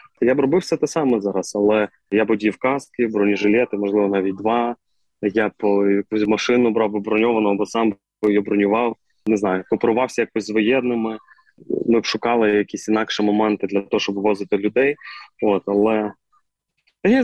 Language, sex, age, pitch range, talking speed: Ukrainian, male, 20-39, 105-115 Hz, 160 wpm